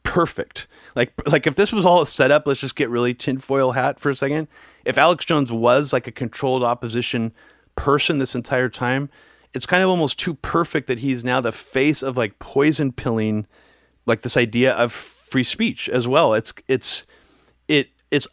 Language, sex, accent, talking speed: English, male, American, 185 wpm